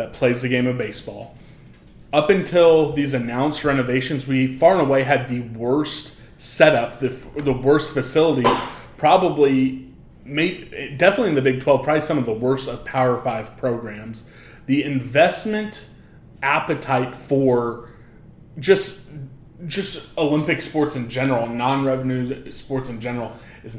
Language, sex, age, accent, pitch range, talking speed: English, male, 20-39, American, 125-145 Hz, 135 wpm